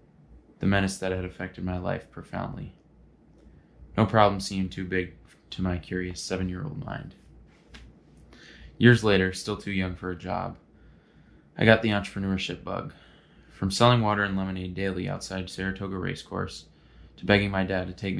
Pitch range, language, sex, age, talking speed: 90-100 Hz, English, male, 20-39, 150 wpm